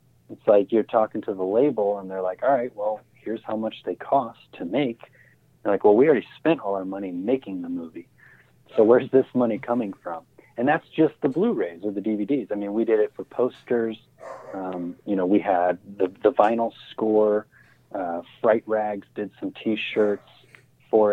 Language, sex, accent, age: English, male, American, 30-49